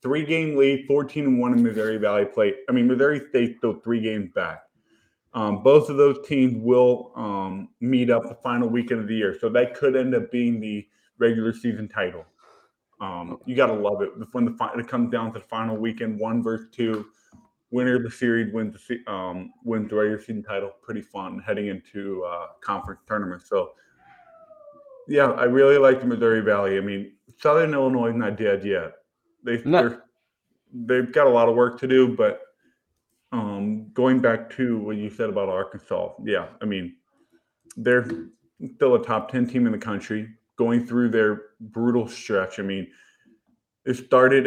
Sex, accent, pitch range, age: male, American, 105-130 Hz, 20-39